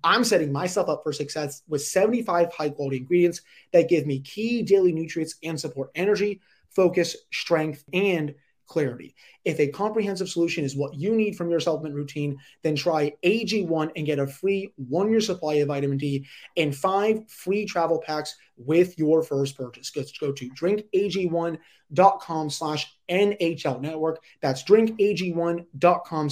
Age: 30-49